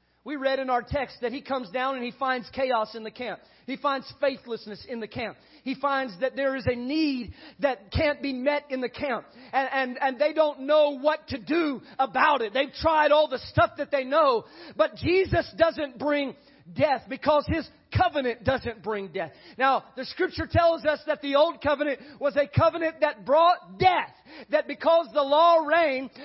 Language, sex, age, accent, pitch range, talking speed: English, male, 40-59, American, 265-345 Hz, 195 wpm